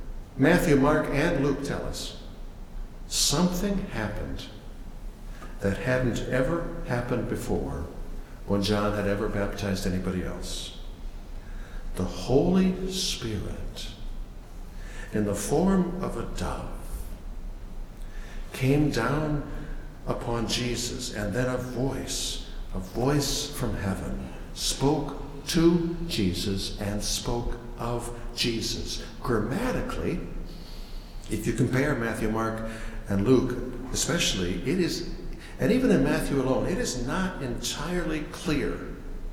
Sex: male